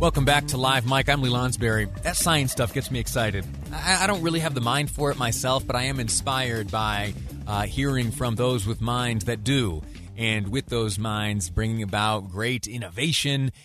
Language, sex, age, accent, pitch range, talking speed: English, male, 30-49, American, 100-125 Hz, 200 wpm